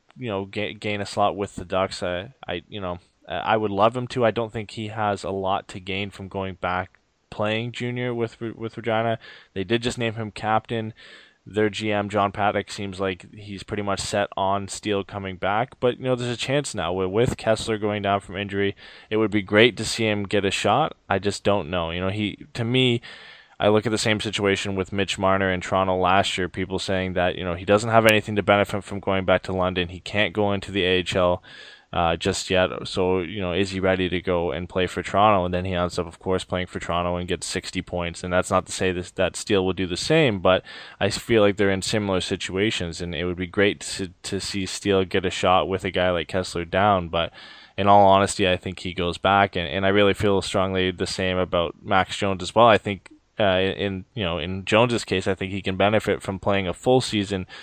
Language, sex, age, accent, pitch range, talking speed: English, male, 10-29, American, 90-105 Hz, 240 wpm